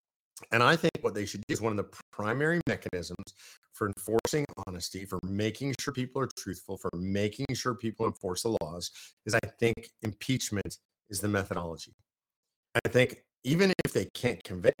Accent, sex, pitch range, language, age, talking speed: American, male, 100-120 Hz, English, 50-69, 175 wpm